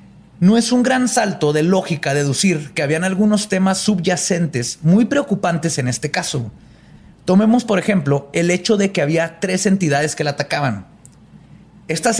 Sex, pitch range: male, 155-190 Hz